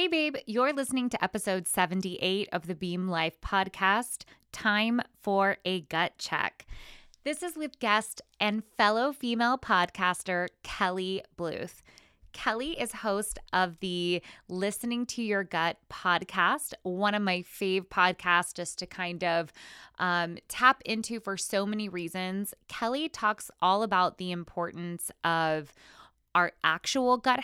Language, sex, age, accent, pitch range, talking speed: English, female, 20-39, American, 175-220 Hz, 140 wpm